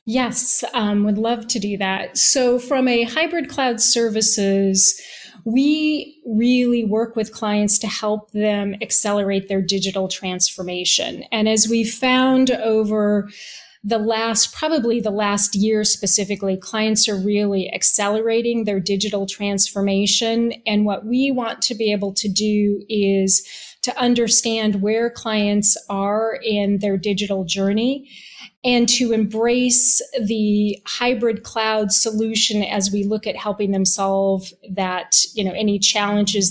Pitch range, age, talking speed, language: 205-235 Hz, 30-49, 135 wpm, English